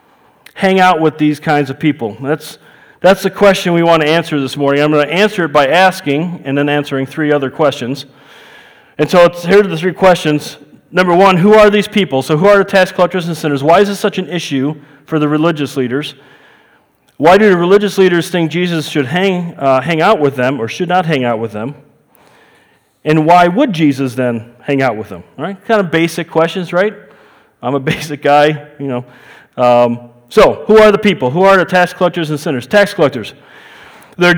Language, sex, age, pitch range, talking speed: English, male, 40-59, 145-185 Hz, 210 wpm